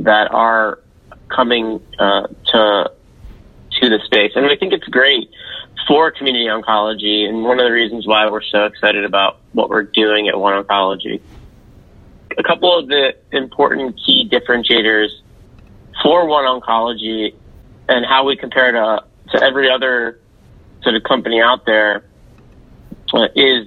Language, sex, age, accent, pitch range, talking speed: English, male, 30-49, American, 110-130 Hz, 140 wpm